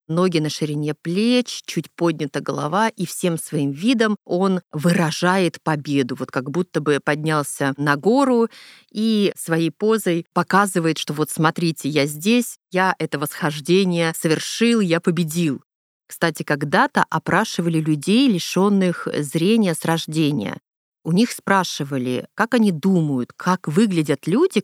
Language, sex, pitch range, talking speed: Russian, female, 155-200 Hz, 130 wpm